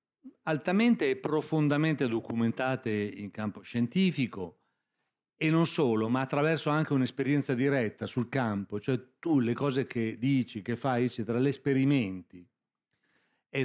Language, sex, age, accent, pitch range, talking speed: Italian, male, 40-59, native, 110-145 Hz, 130 wpm